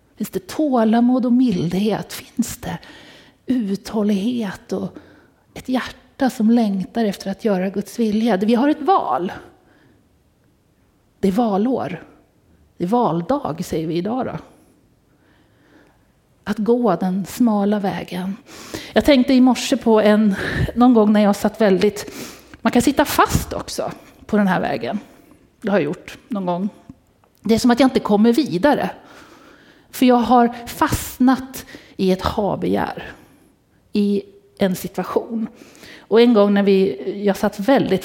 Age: 30-49